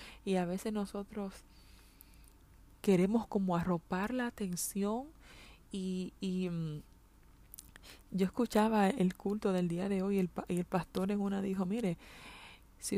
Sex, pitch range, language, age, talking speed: female, 165-200 Hz, Spanish, 20-39, 130 wpm